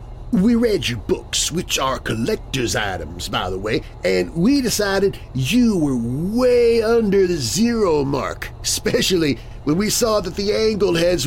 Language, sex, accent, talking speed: English, male, American, 155 wpm